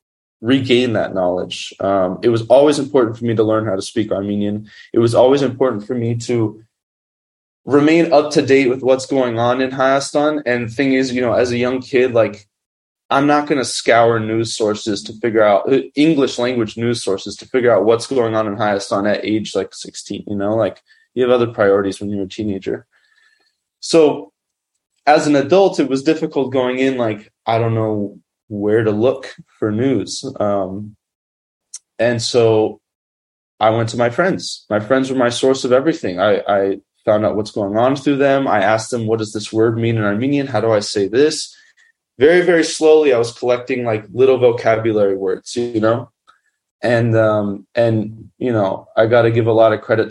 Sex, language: male, English